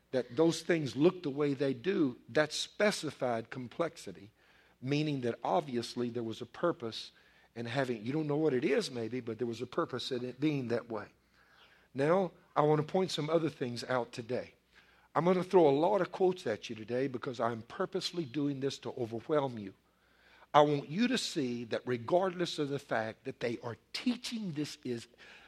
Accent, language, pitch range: American, English, 120-155 Hz